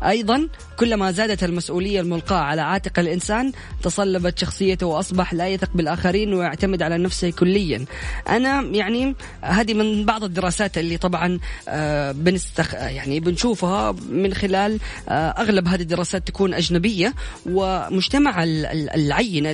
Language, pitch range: Arabic, 165-205 Hz